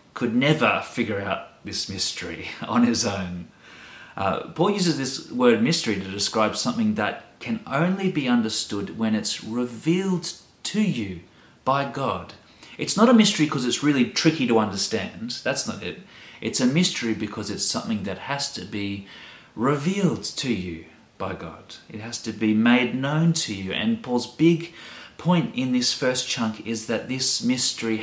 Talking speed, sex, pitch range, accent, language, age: 165 wpm, male, 105-150 Hz, Australian, English, 30-49